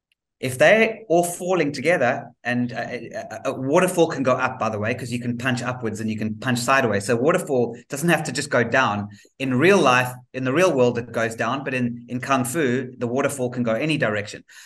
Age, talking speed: 30-49, 220 wpm